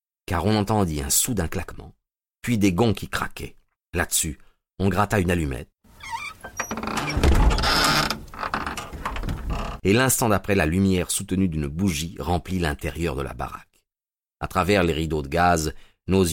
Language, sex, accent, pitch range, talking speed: French, male, French, 80-110 Hz, 130 wpm